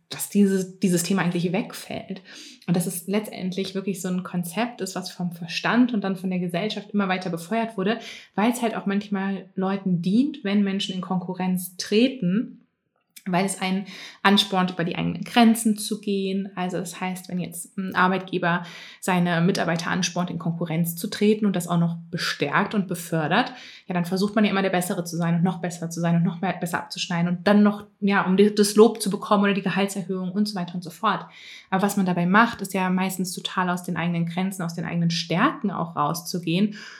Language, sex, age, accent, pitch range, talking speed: German, female, 20-39, German, 180-205 Hz, 205 wpm